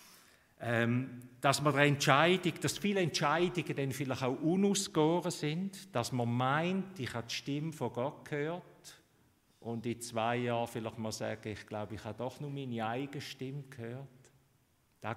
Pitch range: 120-150 Hz